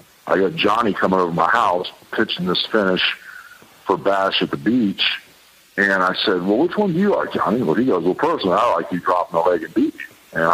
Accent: American